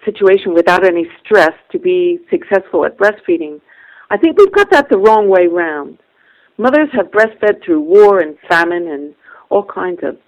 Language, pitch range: English, 185-300 Hz